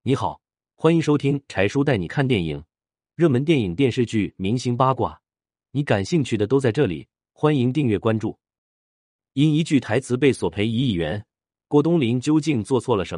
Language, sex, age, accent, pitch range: Chinese, male, 30-49, native, 100-140 Hz